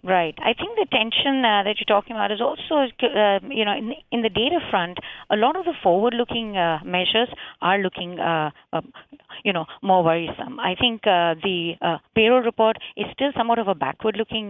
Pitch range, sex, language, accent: 180-240 Hz, female, English, Indian